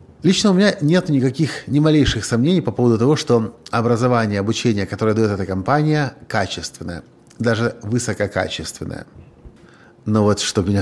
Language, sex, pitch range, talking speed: Russian, male, 110-145 Hz, 135 wpm